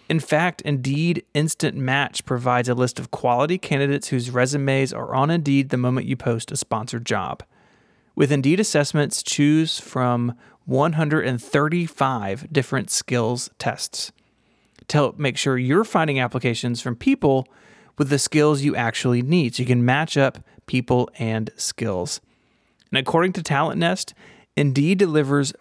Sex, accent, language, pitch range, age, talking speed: male, American, English, 125-150 Hz, 30-49, 145 wpm